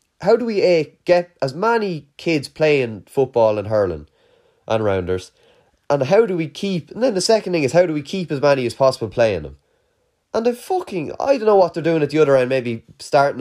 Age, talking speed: 20-39, 225 wpm